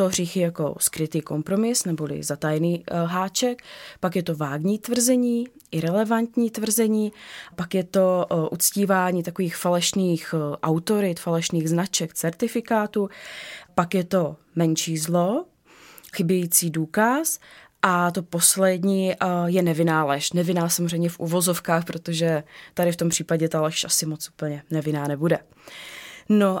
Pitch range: 170-200 Hz